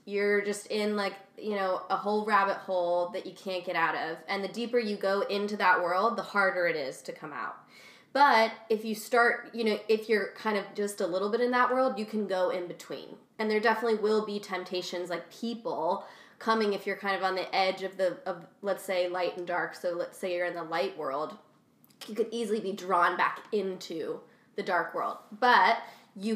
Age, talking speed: 20-39, 220 wpm